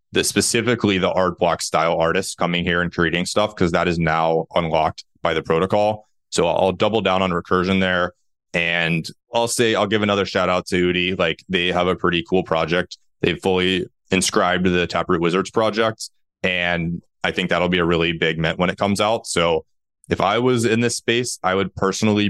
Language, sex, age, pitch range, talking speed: English, male, 20-39, 85-105 Hz, 200 wpm